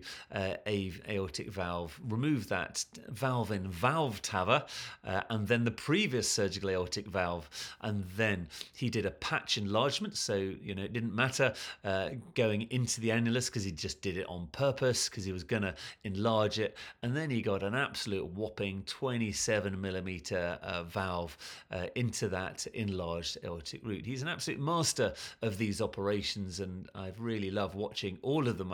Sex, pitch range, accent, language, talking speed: male, 95-130 Hz, British, English, 165 wpm